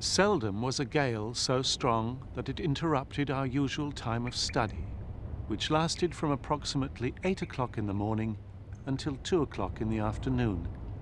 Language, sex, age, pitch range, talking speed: English, male, 50-69, 100-140 Hz, 160 wpm